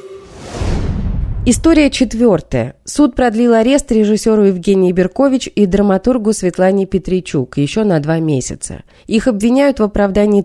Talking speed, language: 115 wpm, Russian